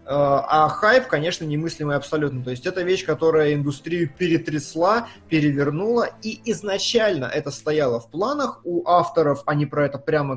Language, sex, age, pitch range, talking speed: Russian, male, 20-39, 140-195 Hz, 145 wpm